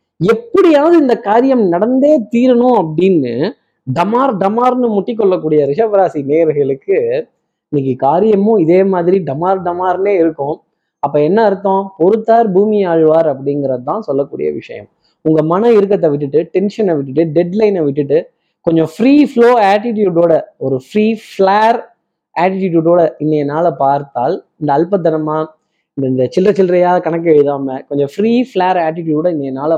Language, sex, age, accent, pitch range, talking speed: Tamil, male, 20-39, native, 155-215 Hz, 120 wpm